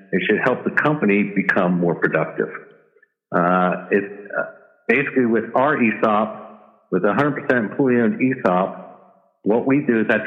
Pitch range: 95-125 Hz